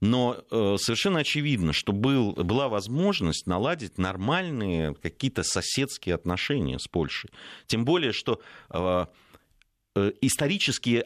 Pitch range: 85-120 Hz